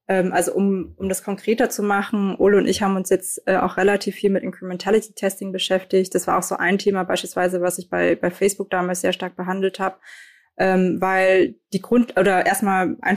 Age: 20-39